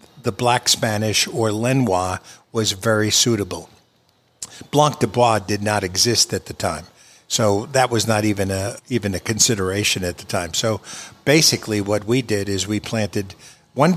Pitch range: 105-120 Hz